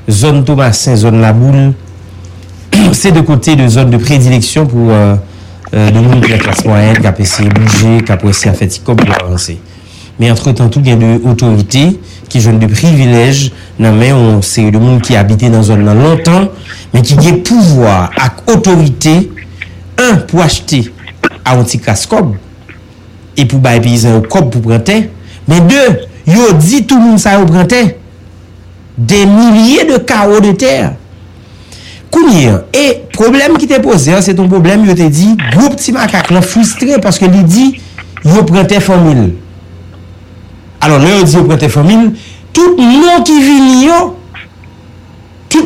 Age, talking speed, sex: 60-79, 170 wpm, male